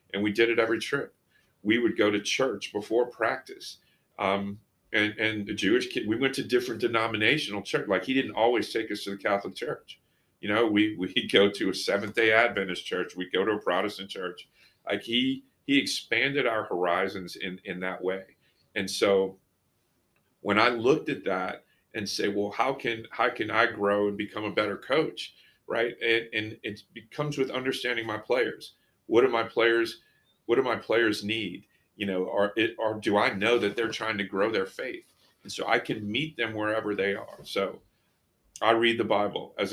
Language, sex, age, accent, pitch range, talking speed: English, male, 40-59, American, 100-115 Hz, 200 wpm